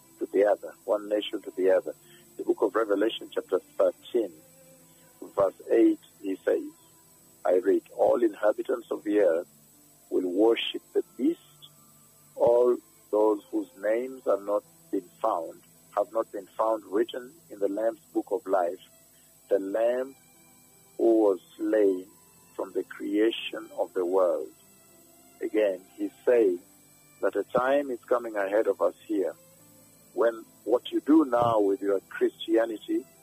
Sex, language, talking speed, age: male, English, 135 wpm, 50-69